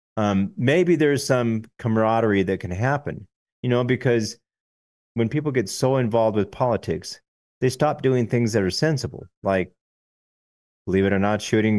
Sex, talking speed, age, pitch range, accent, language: male, 160 wpm, 30-49, 95-125 Hz, American, English